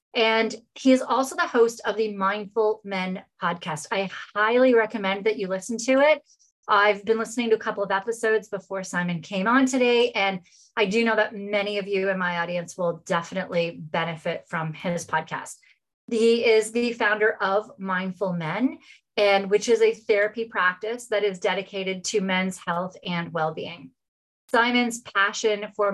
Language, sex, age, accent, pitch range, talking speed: English, female, 30-49, American, 185-225 Hz, 170 wpm